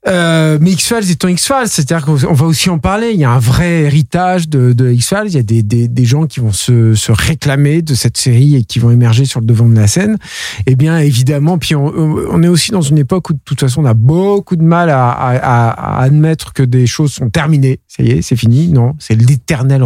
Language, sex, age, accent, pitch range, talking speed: French, male, 50-69, French, 130-175 Hz, 250 wpm